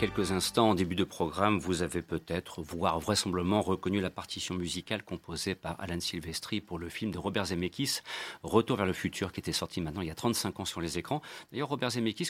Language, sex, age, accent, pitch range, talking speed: French, male, 40-59, French, 95-120 Hz, 225 wpm